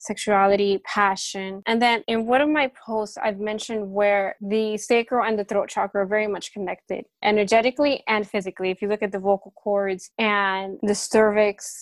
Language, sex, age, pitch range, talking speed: English, female, 20-39, 200-225 Hz, 180 wpm